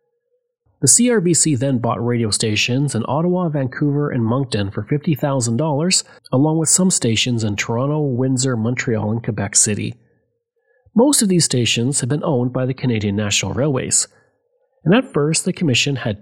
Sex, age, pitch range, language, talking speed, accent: male, 30-49, 115-175 Hz, English, 155 wpm, Canadian